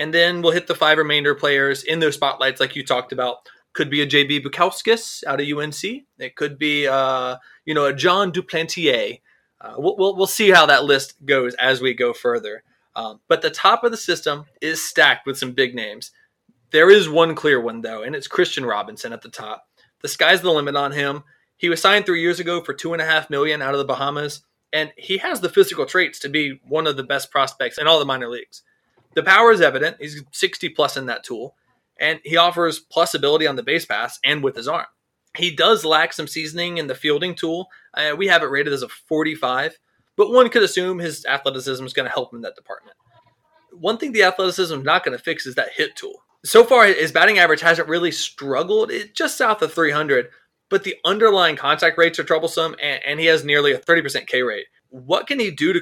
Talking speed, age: 225 wpm, 20-39